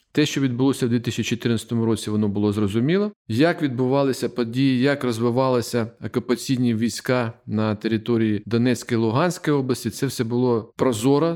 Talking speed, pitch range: 135 wpm, 115-145 Hz